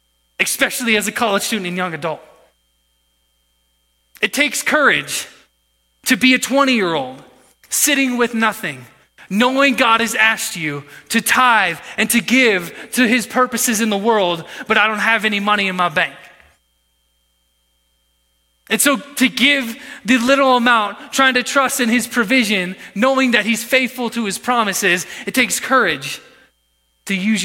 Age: 20-39